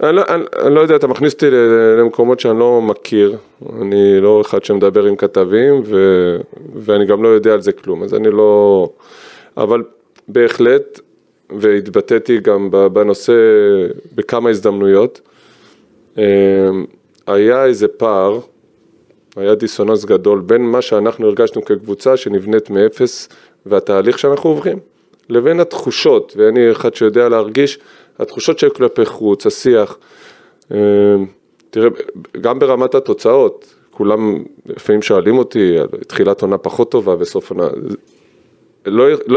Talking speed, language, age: 120 wpm, Hebrew, 20-39